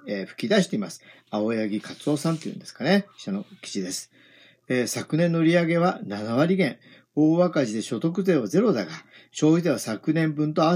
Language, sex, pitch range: Japanese, male, 130-185 Hz